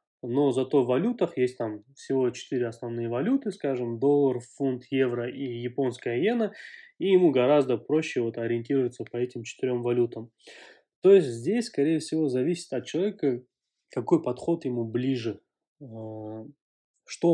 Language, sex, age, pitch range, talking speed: Russian, male, 20-39, 120-145 Hz, 135 wpm